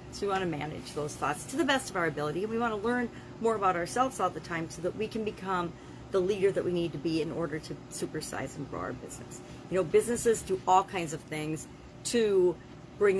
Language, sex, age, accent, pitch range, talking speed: English, female, 40-59, American, 170-210 Hz, 240 wpm